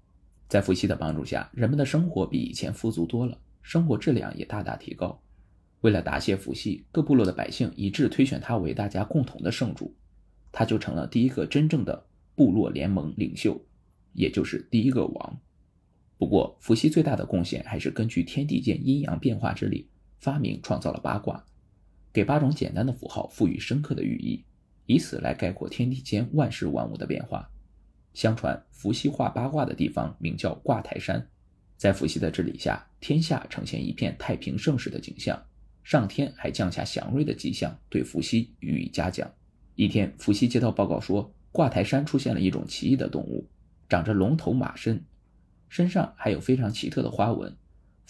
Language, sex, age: Chinese, male, 20-39